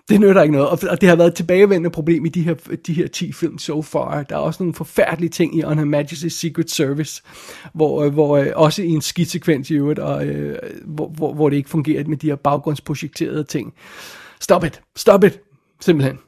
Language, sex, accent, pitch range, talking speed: Danish, male, native, 150-170 Hz, 210 wpm